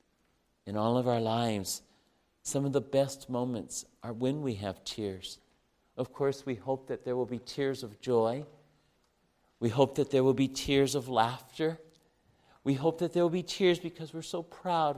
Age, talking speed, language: 50-69, 185 wpm, English